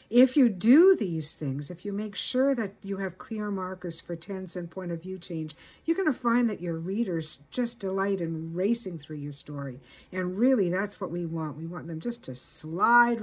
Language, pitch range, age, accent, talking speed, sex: English, 165-225 Hz, 60-79, American, 215 wpm, female